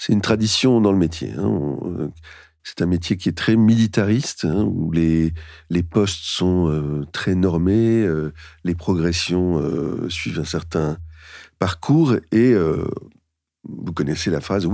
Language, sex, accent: French, male, French